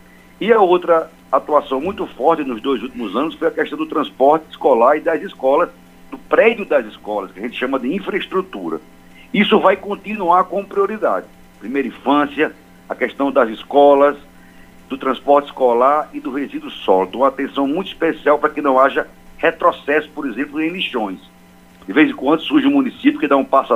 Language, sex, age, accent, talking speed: Portuguese, male, 60-79, Brazilian, 180 wpm